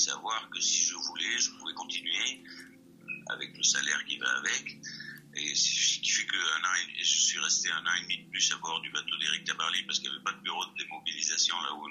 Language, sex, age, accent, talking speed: French, male, 60-79, French, 240 wpm